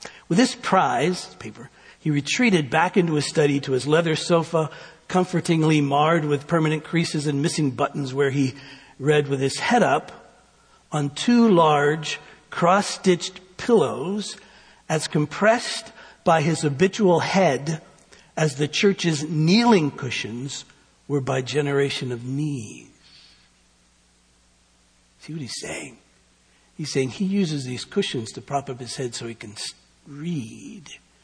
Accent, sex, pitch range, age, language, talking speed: American, male, 110-160 Hz, 60-79, English, 135 wpm